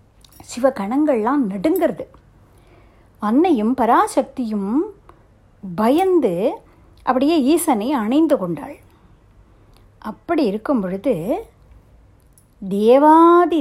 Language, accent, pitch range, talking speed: Tamil, native, 200-315 Hz, 55 wpm